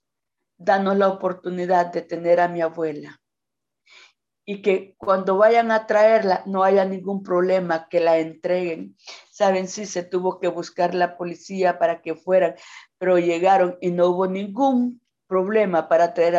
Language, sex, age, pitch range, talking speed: Spanish, female, 50-69, 170-190 Hz, 155 wpm